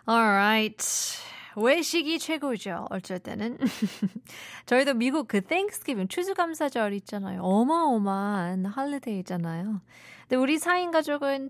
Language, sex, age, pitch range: Korean, female, 20-39, 195-255 Hz